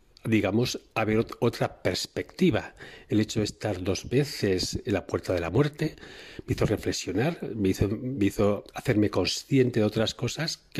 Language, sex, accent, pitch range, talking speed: Spanish, male, Spanish, 100-120 Hz, 165 wpm